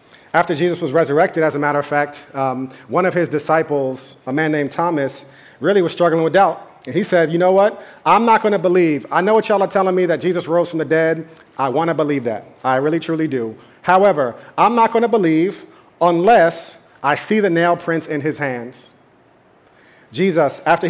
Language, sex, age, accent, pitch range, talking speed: English, male, 40-59, American, 140-175 Hz, 210 wpm